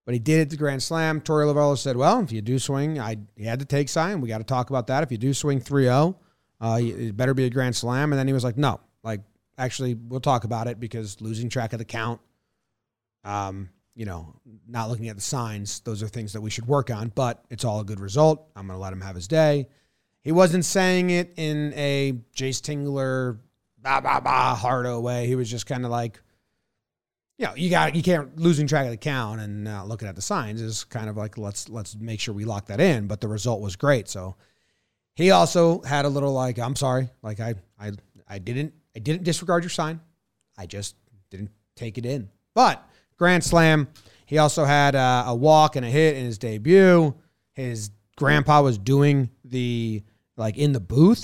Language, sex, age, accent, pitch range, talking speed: English, male, 30-49, American, 110-145 Hz, 220 wpm